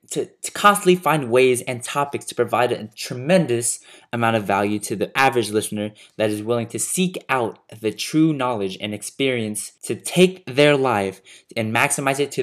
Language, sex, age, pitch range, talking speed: English, male, 20-39, 105-140 Hz, 180 wpm